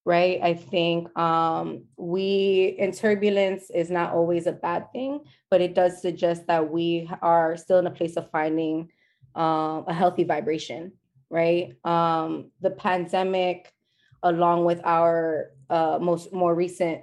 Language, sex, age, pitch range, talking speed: English, female, 20-39, 160-180 Hz, 145 wpm